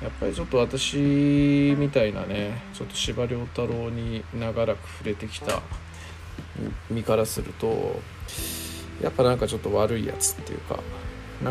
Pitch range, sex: 85-115 Hz, male